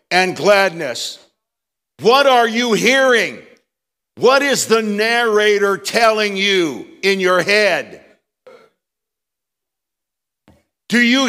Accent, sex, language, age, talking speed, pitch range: American, male, English, 60-79, 90 wpm, 175-235 Hz